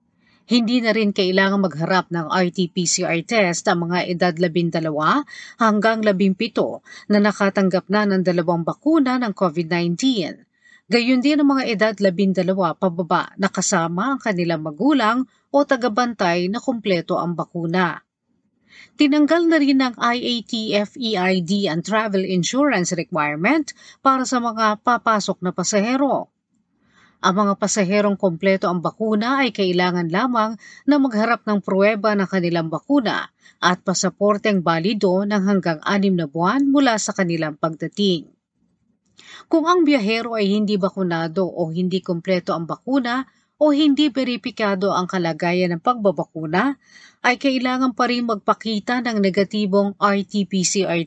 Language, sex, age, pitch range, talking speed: Filipino, female, 40-59, 180-235 Hz, 125 wpm